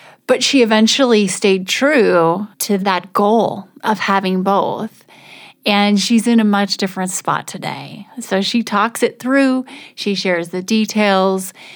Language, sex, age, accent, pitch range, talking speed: English, female, 30-49, American, 190-230 Hz, 145 wpm